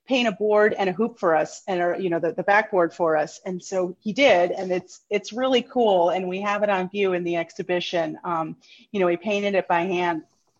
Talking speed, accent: 245 wpm, American